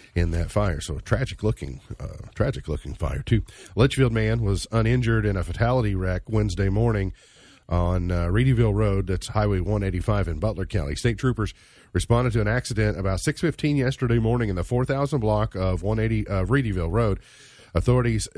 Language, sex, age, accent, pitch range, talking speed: English, male, 40-59, American, 85-115 Hz, 165 wpm